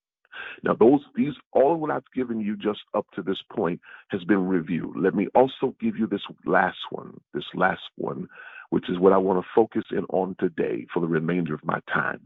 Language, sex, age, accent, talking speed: English, male, 50-69, American, 200 wpm